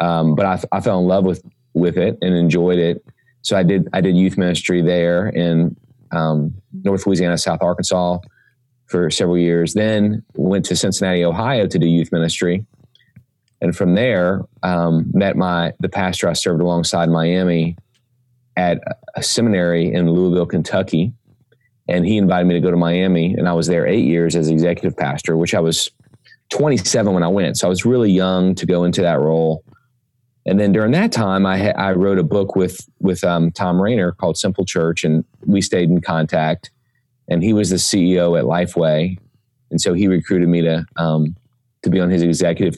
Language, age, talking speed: English, 30-49, 190 wpm